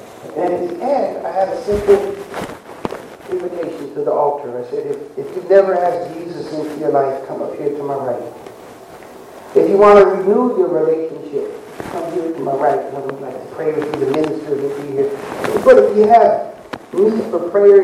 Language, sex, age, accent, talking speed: English, male, 40-59, American, 200 wpm